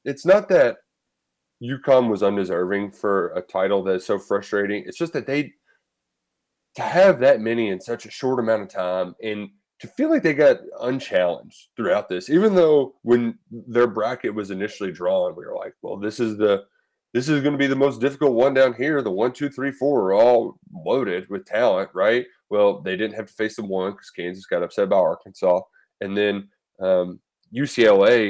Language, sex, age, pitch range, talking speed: English, male, 20-39, 95-130 Hz, 195 wpm